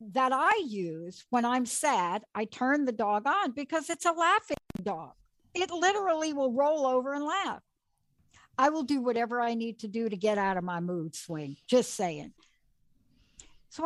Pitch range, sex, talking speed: 195-270 Hz, female, 180 wpm